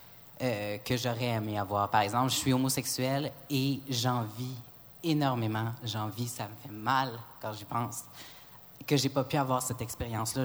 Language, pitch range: French, 115-140 Hz